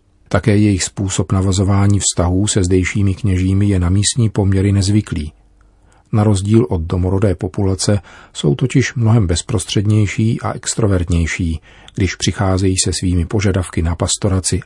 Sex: male